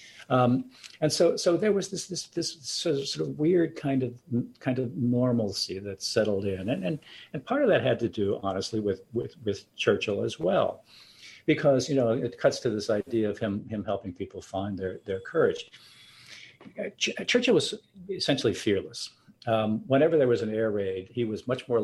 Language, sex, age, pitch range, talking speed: English, male, 50-69, 110-145 Hz, 195 wpm